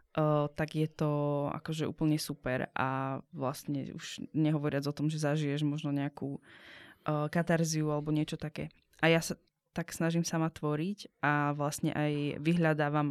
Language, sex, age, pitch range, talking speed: Slovak, female, 20-39, 155-185 Hz, 150 wpm